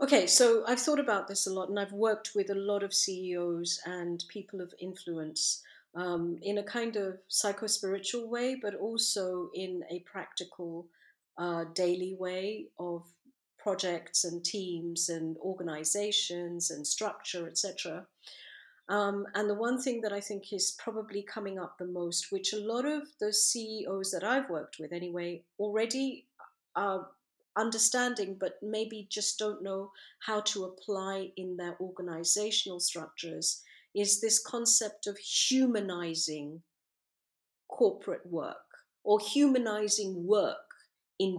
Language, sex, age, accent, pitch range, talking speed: English, female, 40-59, British, 180-235 Hz, 135 wpm